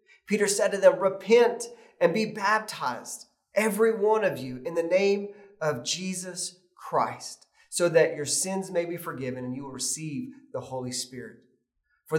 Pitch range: 150-200 Hz